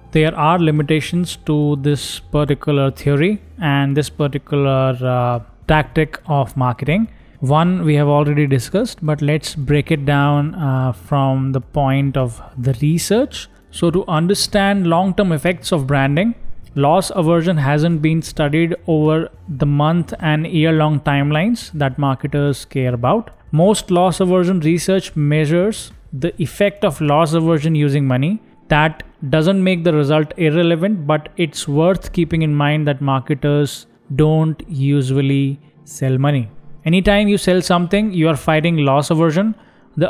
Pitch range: 145-175 Hz